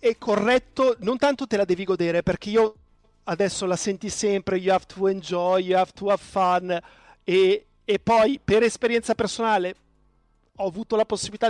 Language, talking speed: Italian, 170 wpm